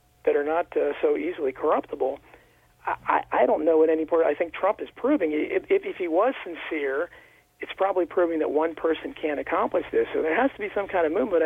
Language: English